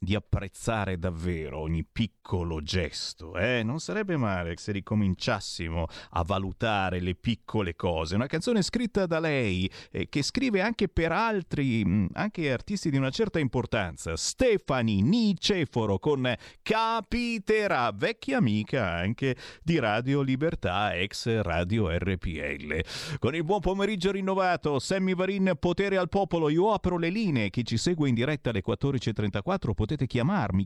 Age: 30-49